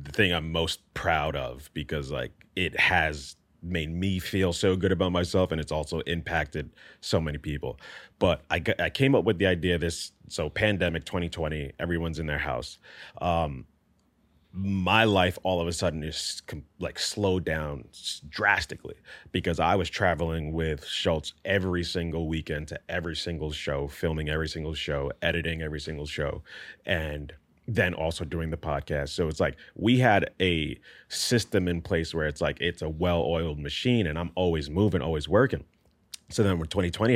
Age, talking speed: 30-49, 175 wpm